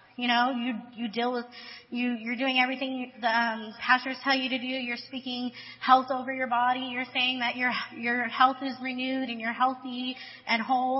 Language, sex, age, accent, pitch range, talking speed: English, female, 20-39, American, 245-275 Hz, 195 wpm